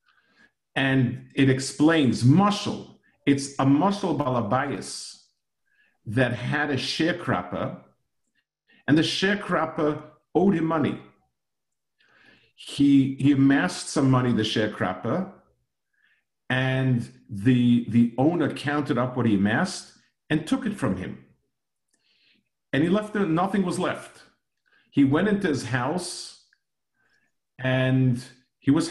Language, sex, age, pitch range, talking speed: English, male, 50-69, 115-155 Hz, 110 wpm